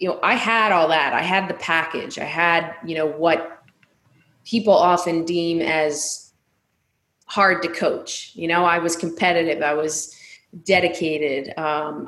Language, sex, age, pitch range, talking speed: English, female, 20-39, 155-180 Hz, 155 wpm